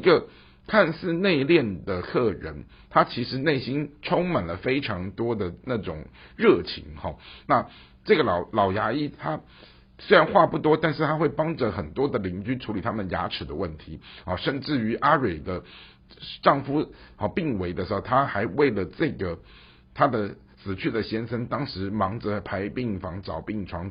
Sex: male